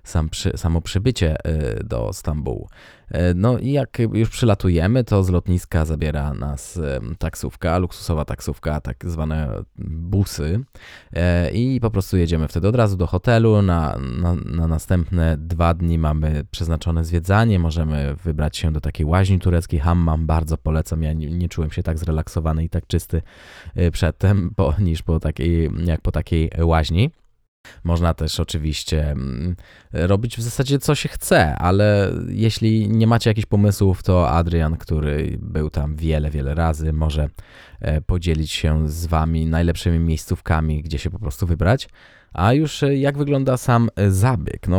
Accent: native